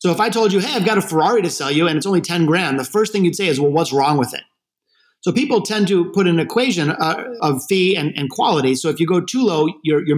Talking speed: 295 wpm